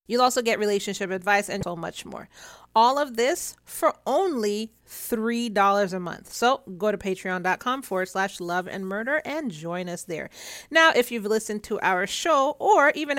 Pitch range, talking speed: 195-275 Hz, 175 wpm